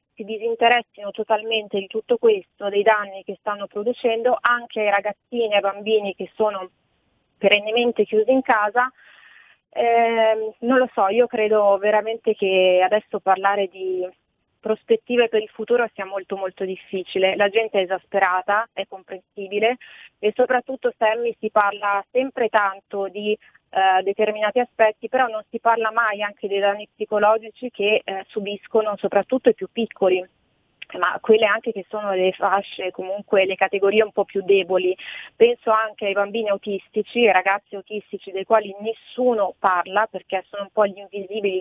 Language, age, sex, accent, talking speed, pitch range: Italian, 30-49, female, native, 155 wpm, 195-220 Hz